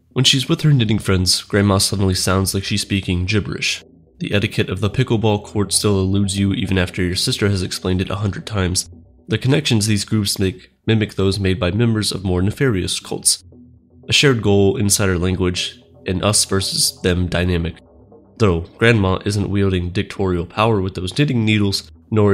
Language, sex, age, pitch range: English, male, 20-39, 90-105 Hz